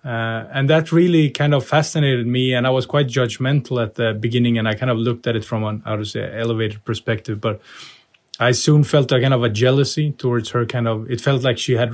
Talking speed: 240 wpm